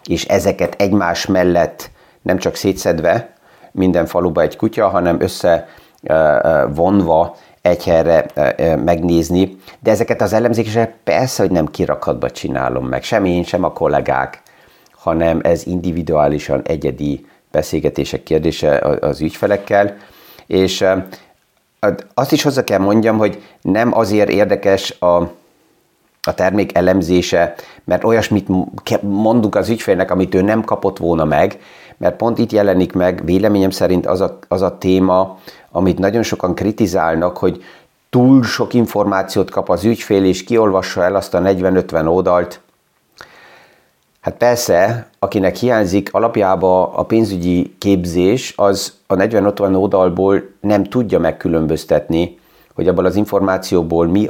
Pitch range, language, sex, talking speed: 90-105 Hz, Hungarian, male, 125 wpm